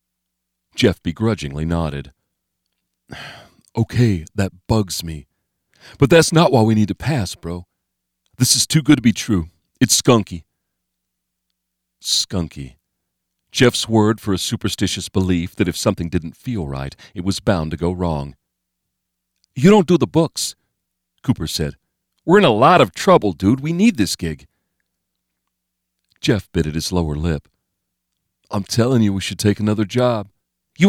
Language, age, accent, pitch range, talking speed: English, 40-59, American, 70-115 Hz, 150 wpm